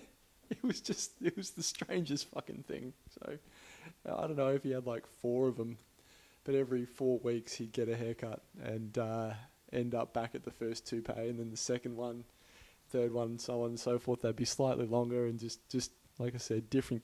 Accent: Australian